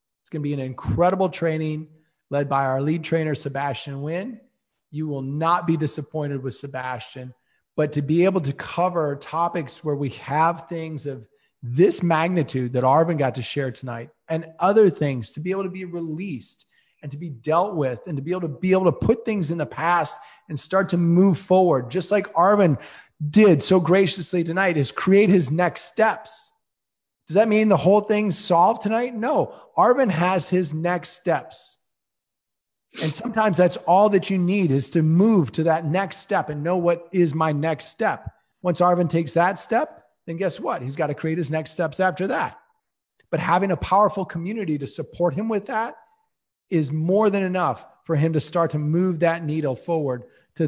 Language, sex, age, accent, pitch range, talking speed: English, male, 30-49, American, 150-185 Hz, 190 wpm